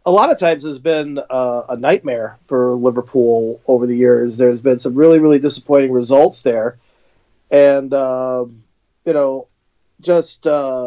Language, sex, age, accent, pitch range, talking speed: English, male, 40-59, American, 125-155 Hz, 150 wpm